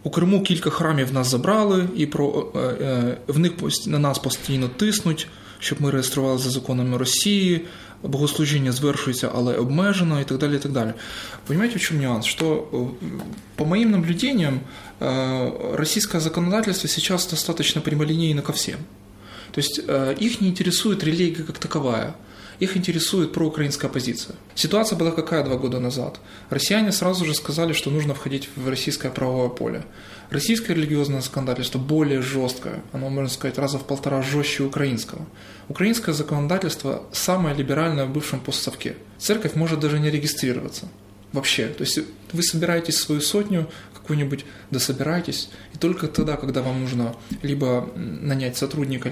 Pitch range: 130-165 Hz